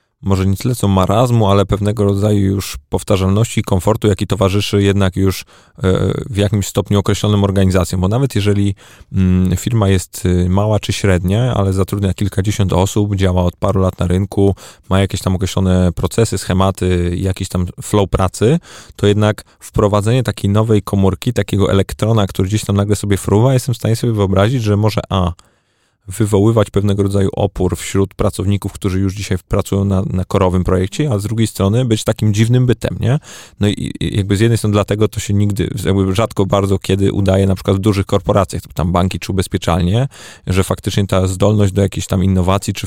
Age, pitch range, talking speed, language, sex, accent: 20-39, 95-105 Hz, 175 wpm, Polish, male, native